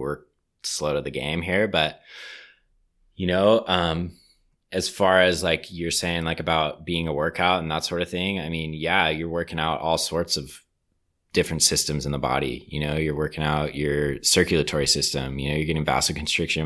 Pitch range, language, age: 75-85 Hz, English, 20-39